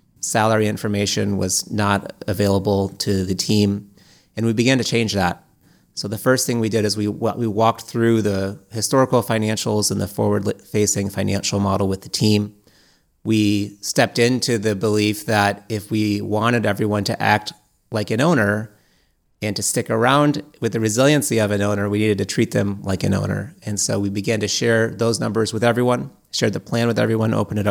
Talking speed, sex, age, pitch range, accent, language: 185 wpm, male, 30-49, 100-115 Hz, American, English